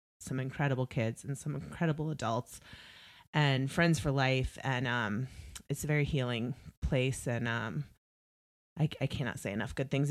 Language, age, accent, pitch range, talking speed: English, 30-49, American, 135-165 Hz, 160 wpm